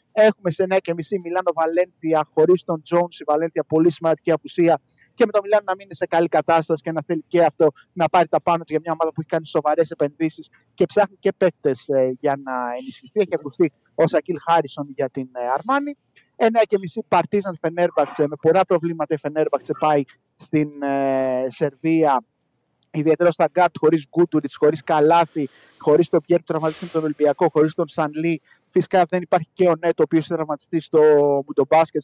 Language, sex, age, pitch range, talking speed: Greek, male, 30-49, 145-175 Hz, 180 wpm